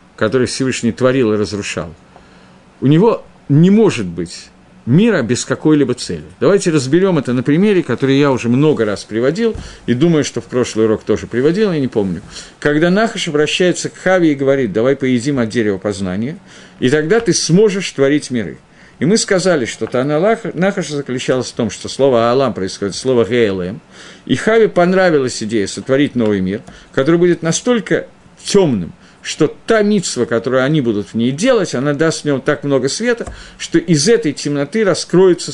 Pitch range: 120-180 Hz